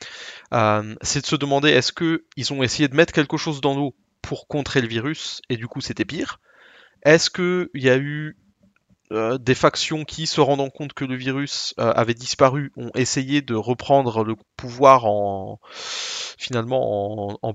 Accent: French